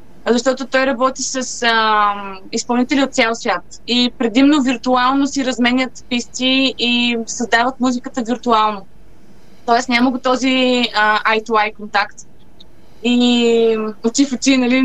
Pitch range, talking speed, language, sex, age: 230-275 Hz, 120 wpm, Bulgarian, female, 20-39